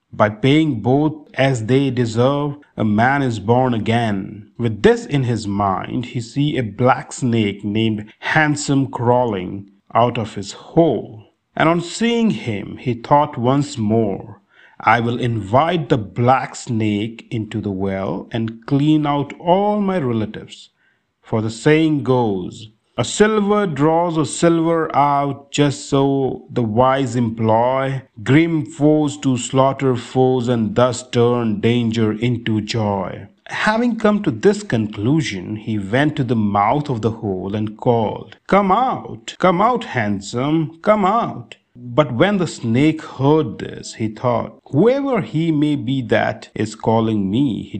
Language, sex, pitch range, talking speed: English, male, 110-150 Hz, 145 wpm